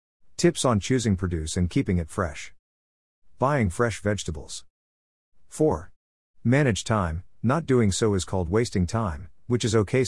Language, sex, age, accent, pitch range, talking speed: English, male, 50-69, American, 80-115 Hz, 145 wpm